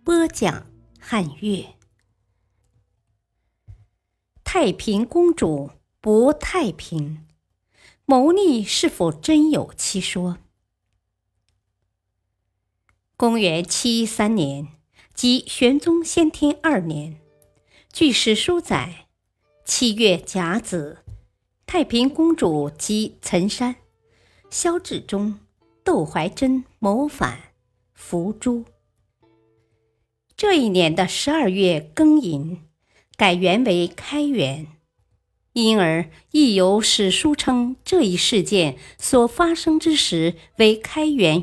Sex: male